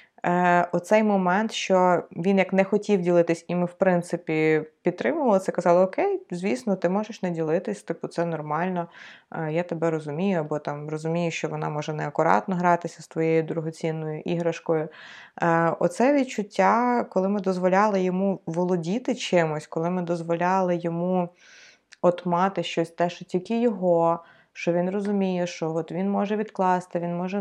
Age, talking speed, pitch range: 20-39, 145 wpm, 165-195 Hz